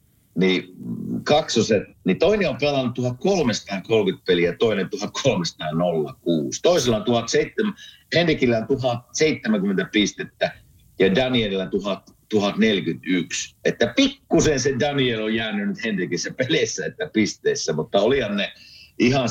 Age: 50-69